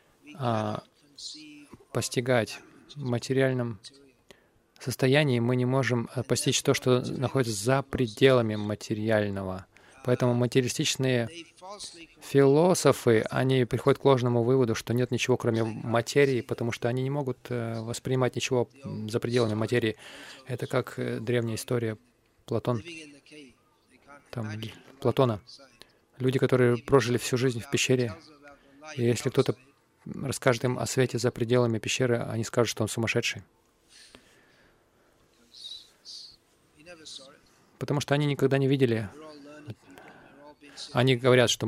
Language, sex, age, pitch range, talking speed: Russian, male, 20-39, 115-140 Hz, 105 wpm